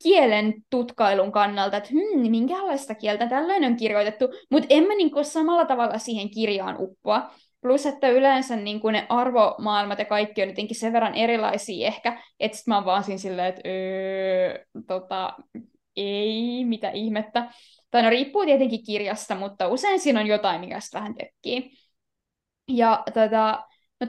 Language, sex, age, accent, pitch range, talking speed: Finnish, female, 20-39, native, 215-270 Hz, 150 wpm